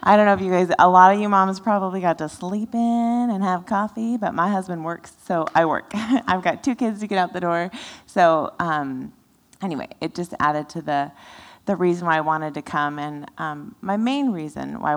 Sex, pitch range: female, 155-200 Hz